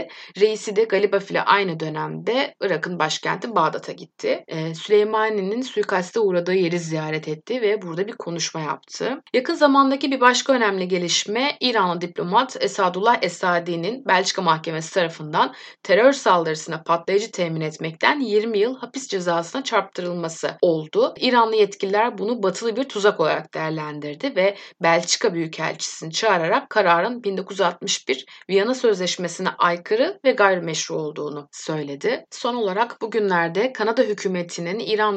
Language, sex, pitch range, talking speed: Turkish, female, 170-220 Hz, 125 wpm